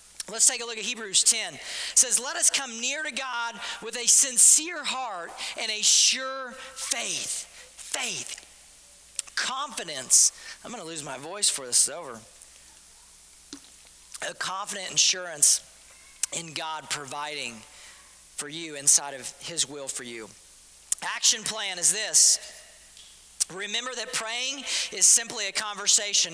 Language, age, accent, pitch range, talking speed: English, 40-59, American, 155-215 Hz, 135 wpm